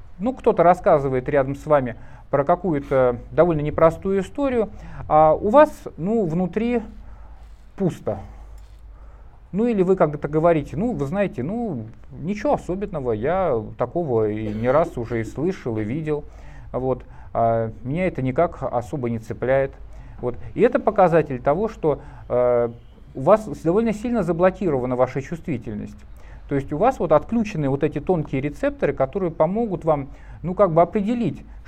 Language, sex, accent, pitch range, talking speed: Russian, male, native, 125-195 Hz, 140 wpm